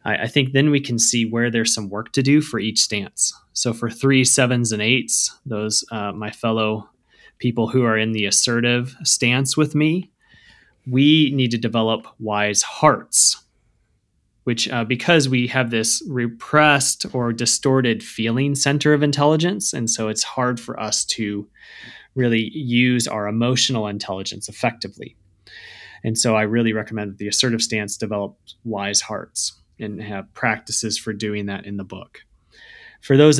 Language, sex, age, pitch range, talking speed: English, male, 20-39, 105-130 Hz, 160 wpm